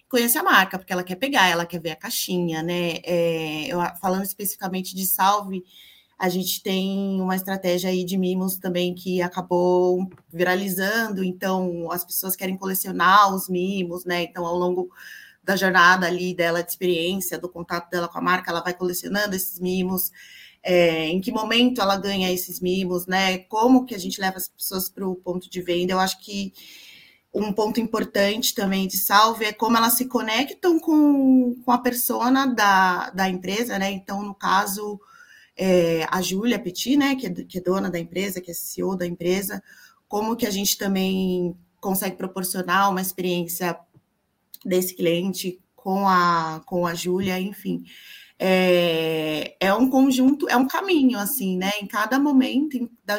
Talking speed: 170 wpm